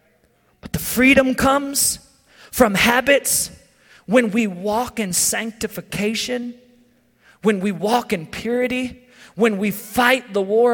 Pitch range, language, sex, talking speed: 230-320 Hz, English, male, 105 wpm